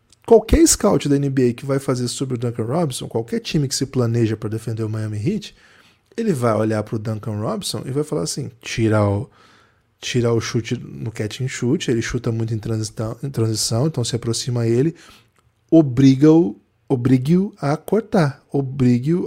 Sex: male